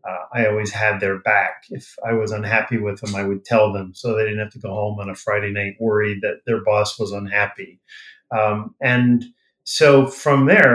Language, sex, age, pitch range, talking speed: English, male, 40-59, 110-140 Hz, 210 wpm